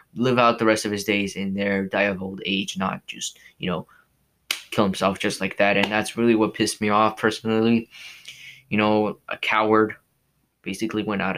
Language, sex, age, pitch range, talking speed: English, male, 20-39, 100-115 Hz, 195 wpm